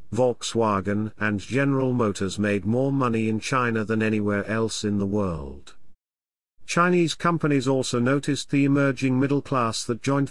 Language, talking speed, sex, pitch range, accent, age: English, 145 wpm, male, 105-140 Hz, British, 50-69